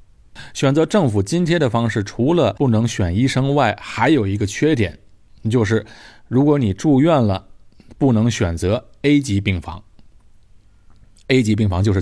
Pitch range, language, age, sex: 95-120 Hz, Chinese, 20-39, male